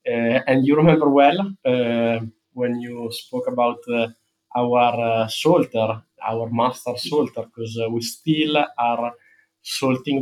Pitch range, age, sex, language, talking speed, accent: 115-140 Hz, 20-39, male, English, 135 wpm, Italian